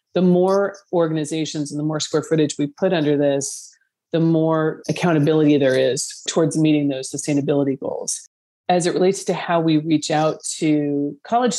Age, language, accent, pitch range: 40-59, English, American, 145-170 Hz